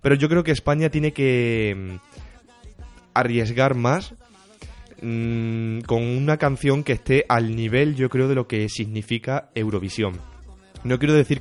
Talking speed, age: 135 wpm, 20-39